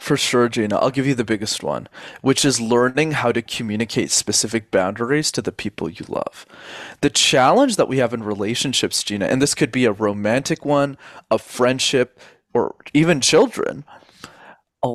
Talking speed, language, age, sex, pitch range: 175 wpm, English, 20-39, male, 120-165 Hz